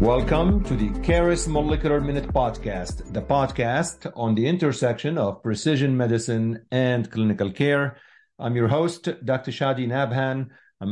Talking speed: 135 wpm